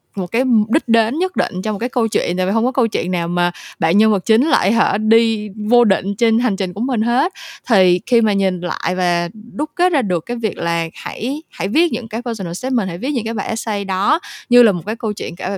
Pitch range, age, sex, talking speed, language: 180-240 Hz, 20-39, female, 265 wpm, Vietnamese